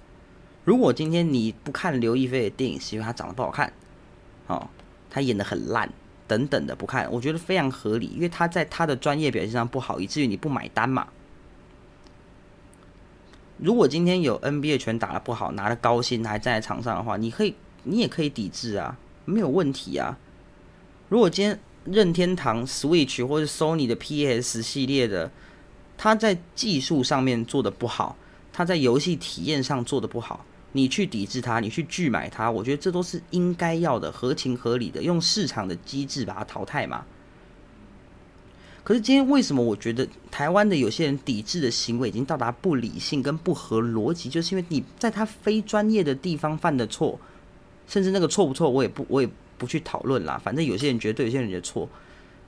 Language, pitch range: Chinese, 115-170 Hz